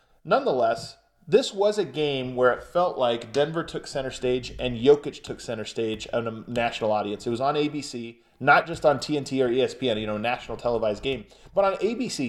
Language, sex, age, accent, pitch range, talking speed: English, male, 30-49, American, 130-170 Hz, 195 wpm